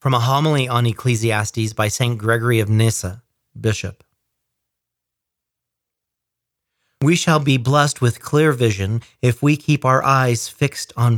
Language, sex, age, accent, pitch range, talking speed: English, male, 40-59, American, 115-150 Hz, 135 wpm